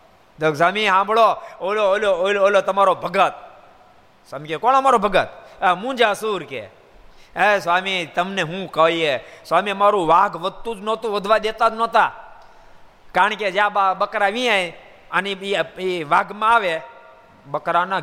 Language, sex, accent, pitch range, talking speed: Gujarati, male, native, 140-210 Hz, 55 wpm